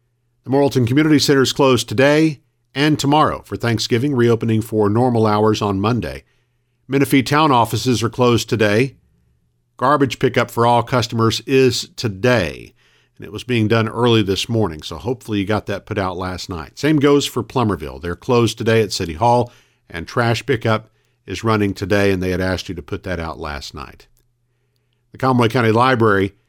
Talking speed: 175 wpm